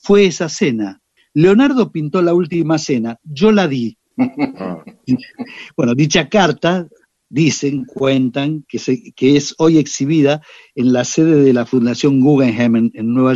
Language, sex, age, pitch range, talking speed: Spanish, male, 50-69, 140-190 Hz, 140 wpm